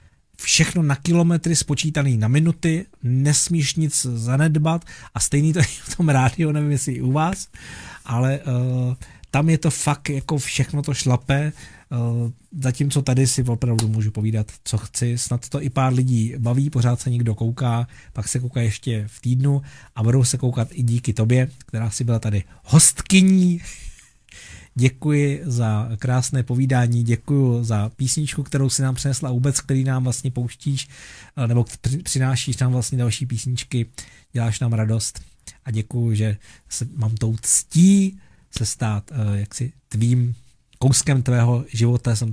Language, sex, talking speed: Czech, male, 155 wpm